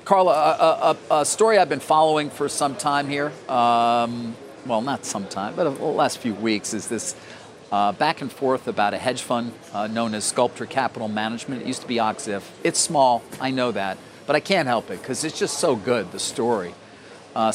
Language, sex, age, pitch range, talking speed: English, male, 50-69, 115-140 Hz, 205 wpm